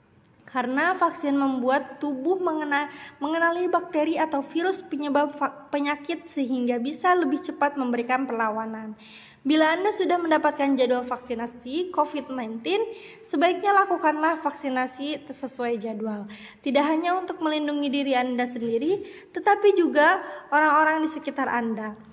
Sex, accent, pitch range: female, native, 255-330 Hz